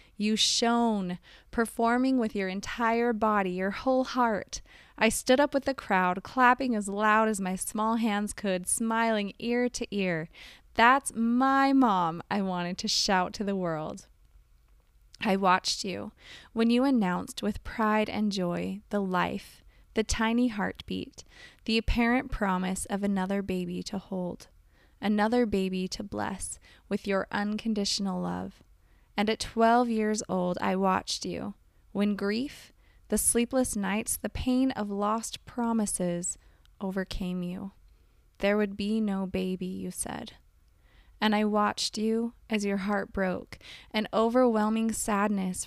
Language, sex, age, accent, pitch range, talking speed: English, female, 20-39, American, 190-230 Hz, 140 wpm